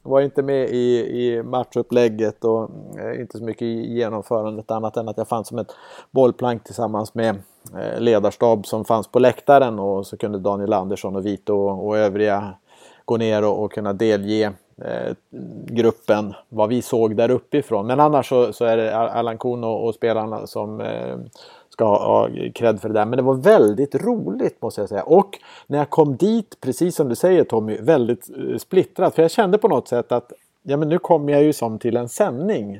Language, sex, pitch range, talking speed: English, male, 110-140 Hz, 180 wpm